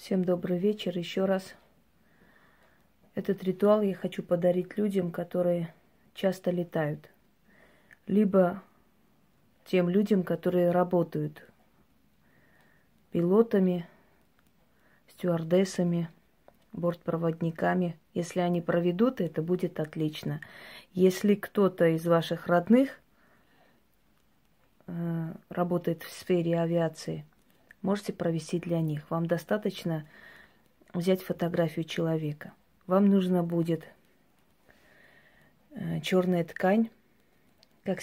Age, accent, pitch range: 30-49, native, 170-190 Hz